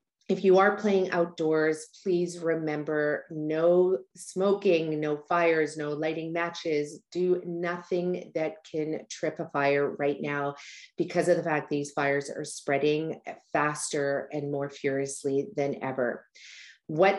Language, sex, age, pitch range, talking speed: English, female, 40-59, 145-165 Hz, 135 wpm